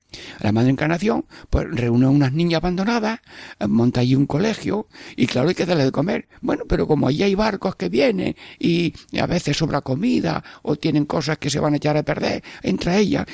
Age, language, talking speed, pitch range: 60-79, Spanish, 200 wpm, 120-170 Hz